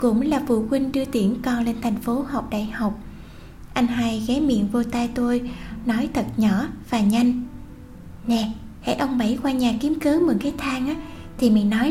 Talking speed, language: 200 wpm, Vietnamese